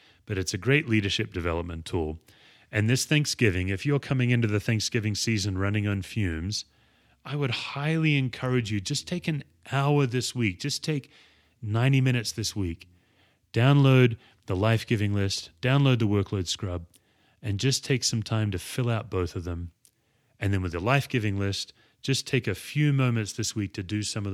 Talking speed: 180 wpm